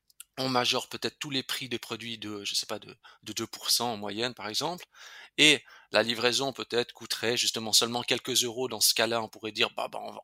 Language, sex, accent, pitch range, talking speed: French, male, French, 110-135 Hz, 210 wpm